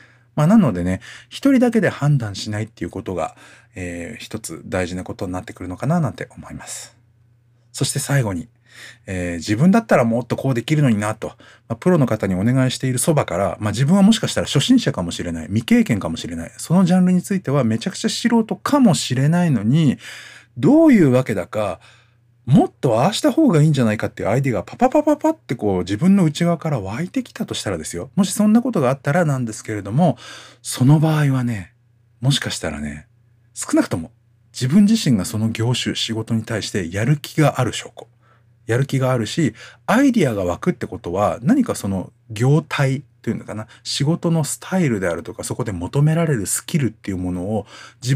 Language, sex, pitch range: Japanese, male, 105-155 Hz